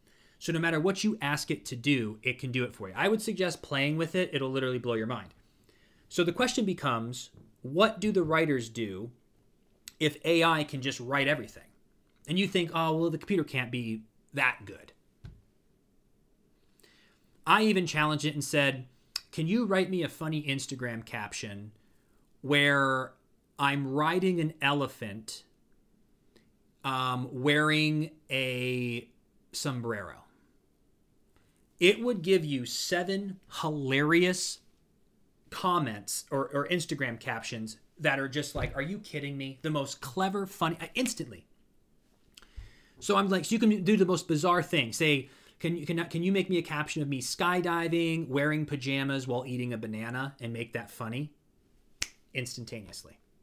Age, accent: 30-49, American